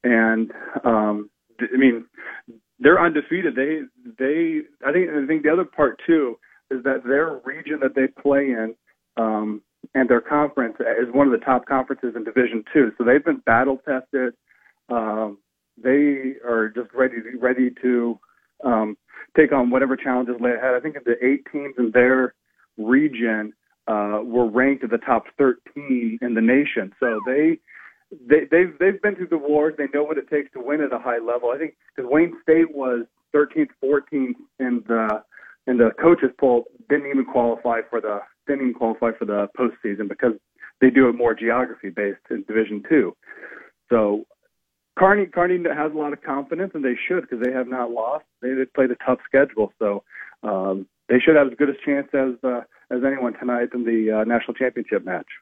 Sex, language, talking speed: male, English, 185 wpm